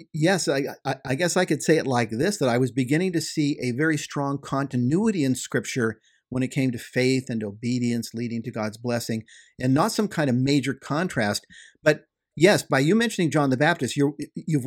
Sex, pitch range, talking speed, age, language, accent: male, 120-170 Hz, 205 wpm, 50-69, English, American